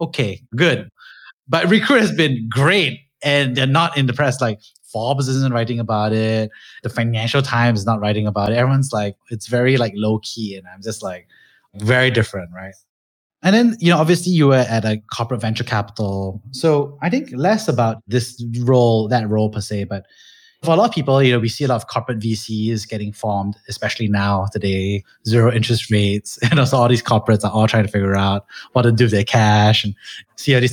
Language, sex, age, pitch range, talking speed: English, male, 20-39, 105-135 Hz, 215 wpm